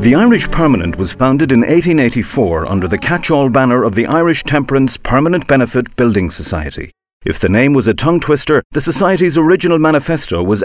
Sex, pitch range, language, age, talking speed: male, 100-145 Hz, English, 50-69, 175 wpm